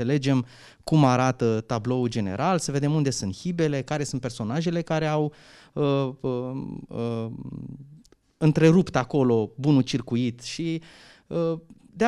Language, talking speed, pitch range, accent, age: Romanian, 125 wpm, 130-185 Hz, native, 20-39